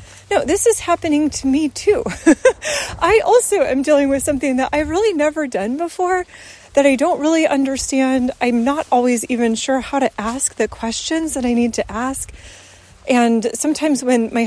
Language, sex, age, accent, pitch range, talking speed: English, female, 30-49, American, 235-315 Hz, 180 wpm